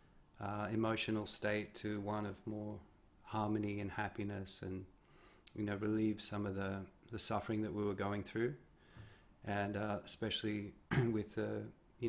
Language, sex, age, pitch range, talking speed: English, male, 30-49, 100-110 Hz, 150 wpm